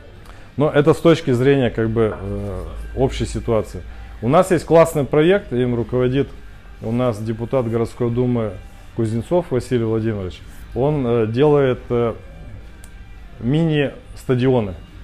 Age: 20-39